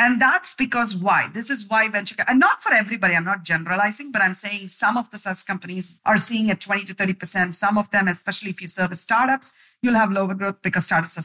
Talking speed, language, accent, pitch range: 245 wpm, English, Indian, 185-240 Hz